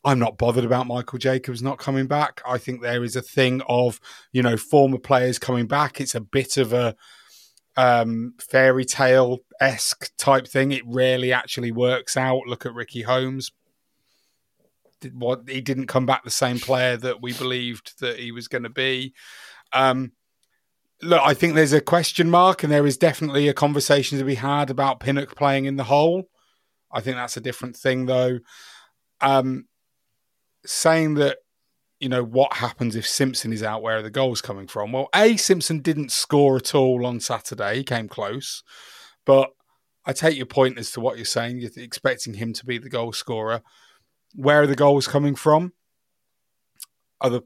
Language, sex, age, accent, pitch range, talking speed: English, male, 30-49, British, 125-140 Hz, 180 wpm